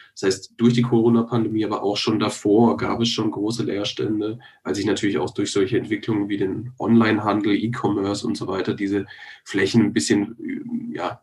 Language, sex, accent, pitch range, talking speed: German, male, German, 110-125 Hz, 175 wpm